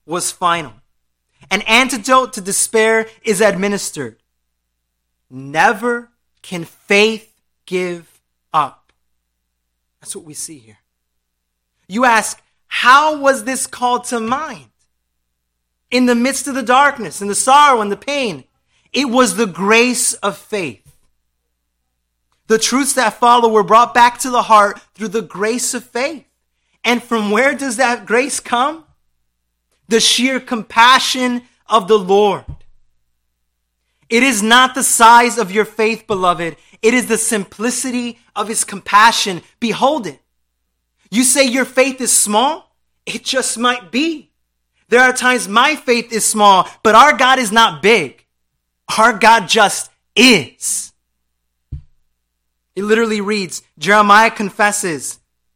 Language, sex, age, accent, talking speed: English, male, 30-49, American, 130 wpm